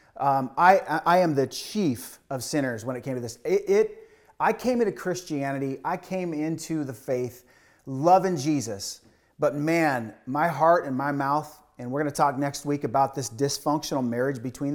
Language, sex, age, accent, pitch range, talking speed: English, male, 30-49, American, 130-160 Hz, 180 wpm